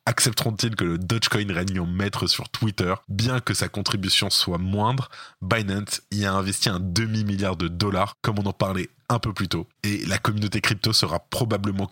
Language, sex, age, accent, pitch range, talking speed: French, male, 20-39, French, 95-120 Hz, 185 wpm